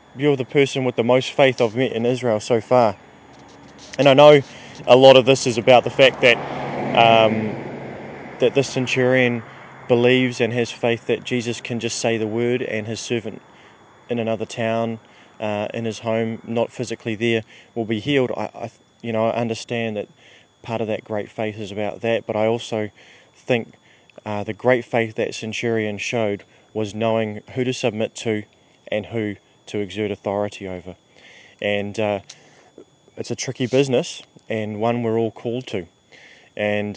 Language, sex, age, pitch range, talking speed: English, male, 20-39, 110-125 Hz, 170 wpm